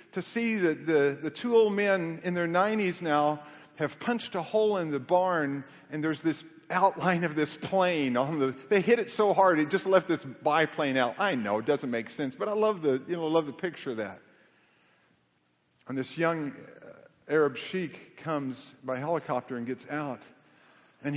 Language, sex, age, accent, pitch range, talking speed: English, male, 50-69, American, 140-200 Hz, 180 wpm